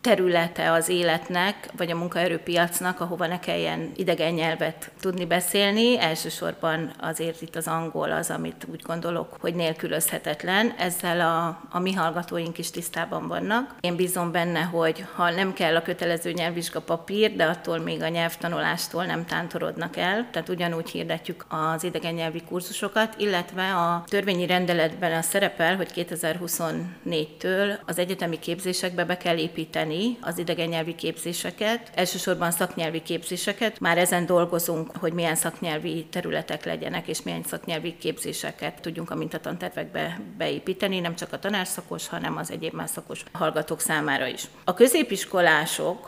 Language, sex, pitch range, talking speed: Hungarian, female, 165-185 Hz, 140 wpm